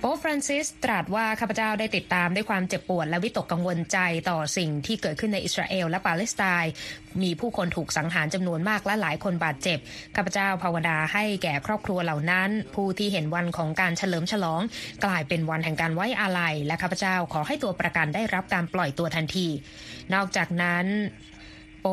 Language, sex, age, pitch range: Thai, female, 20-39, 170-210 Hz